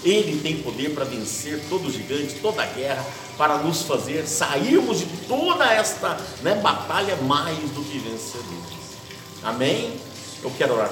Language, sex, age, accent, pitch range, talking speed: Portuguese, male, 50-69, Brazilian, 135-200 Hz, 155 wpm